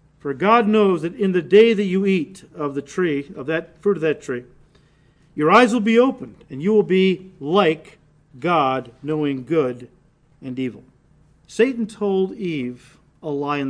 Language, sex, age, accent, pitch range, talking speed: English, male, 50-69, American, 150-210 Hz, 175 wpm